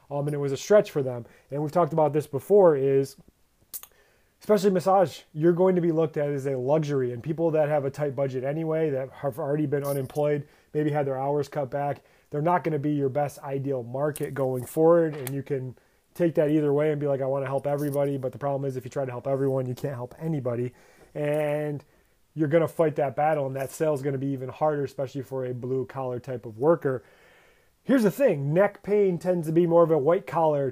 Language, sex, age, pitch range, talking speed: English, male, 30-49, 135-160 Hz, 225 wpm